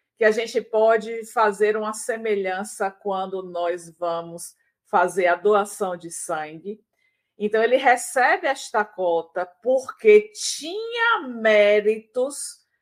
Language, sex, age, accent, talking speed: Portuguese, female, 50-69, Brazilian, 110 wpm